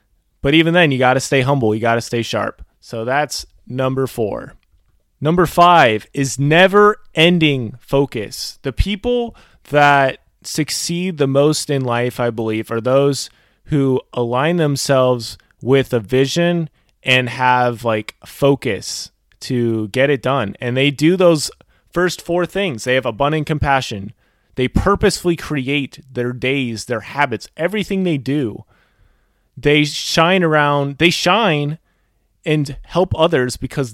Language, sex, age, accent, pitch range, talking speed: English, male, 20-39, American, 125-170 Hz, 140 wpm